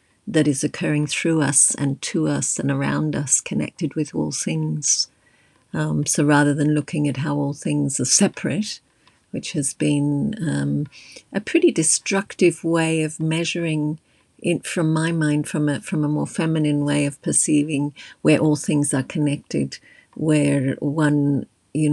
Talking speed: 155 wpm